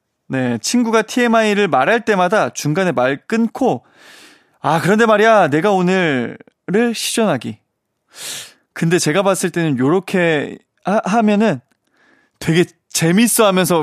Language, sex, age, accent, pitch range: Korean, male, 20-39, native, 145-215 Hz